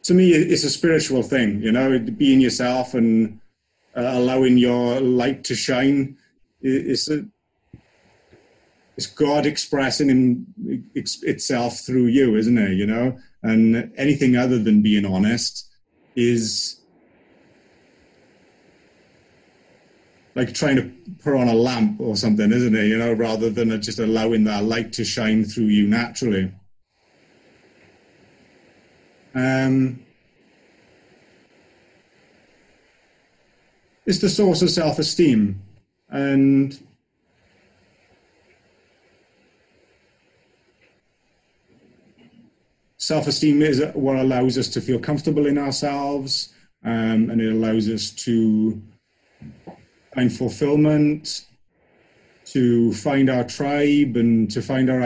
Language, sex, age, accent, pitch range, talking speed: English, male, 30-49, British, 110-140 Hz, 100 wpm